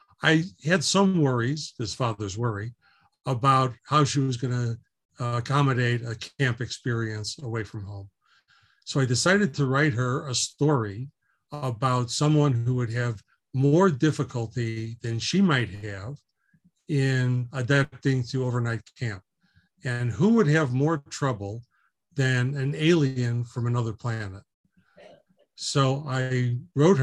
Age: 50-69